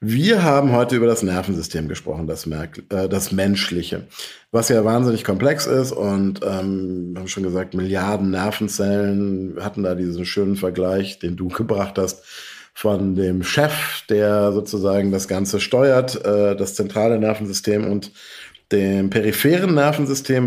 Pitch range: 95-130 Hz